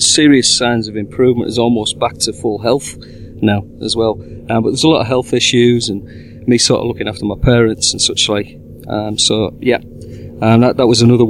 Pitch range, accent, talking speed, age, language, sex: 115-145 Hz, British, 220 wpm, 40-59, English, male